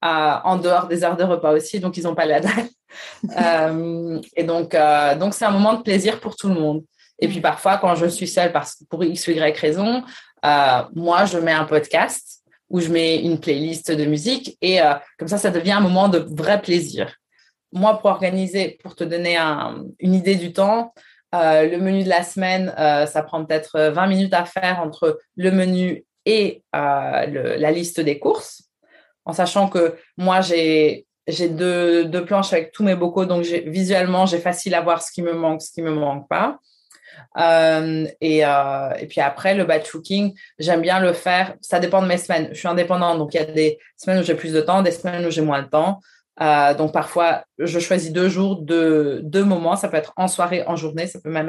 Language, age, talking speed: French, 20-39, 220 wpm